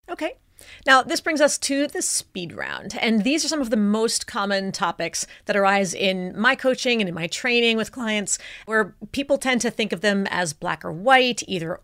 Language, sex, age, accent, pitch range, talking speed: English, female, 30-49, American, 185-245 Hz, 210 wpm